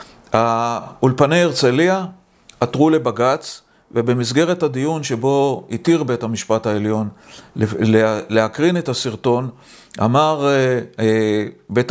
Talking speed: 80 wpm